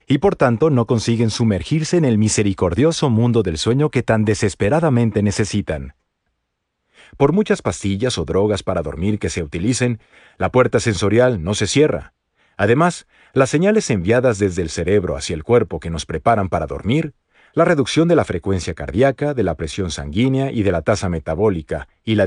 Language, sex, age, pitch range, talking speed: Spanish, male, 40-59, 95-135 Hz, 170 wpm